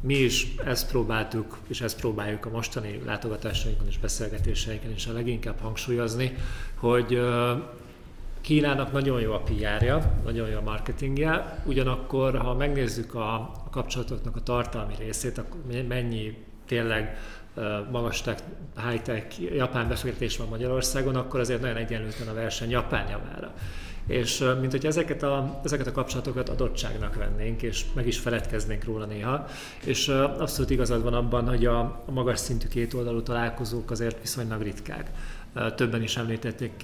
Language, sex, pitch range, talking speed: Hungarian, male, 110-125 Hz, 140 wpm